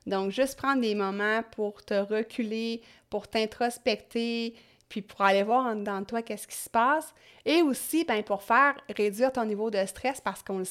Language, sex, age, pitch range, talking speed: French, female, 30-49, 205-250 Hz, 195 wpm